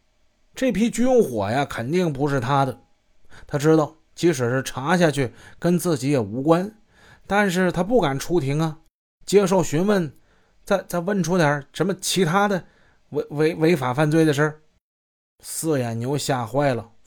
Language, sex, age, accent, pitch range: Chinese, male, 20-39, native, 120-160 Hz